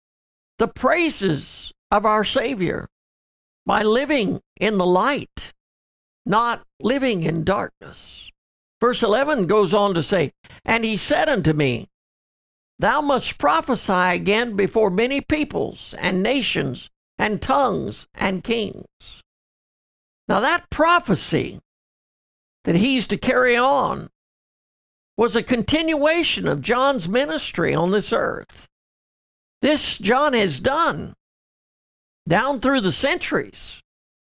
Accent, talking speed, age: American, 110 wpm, 60-79